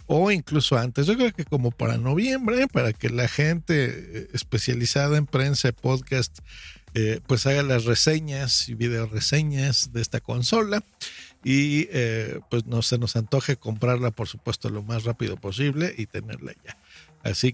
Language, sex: Spanish, male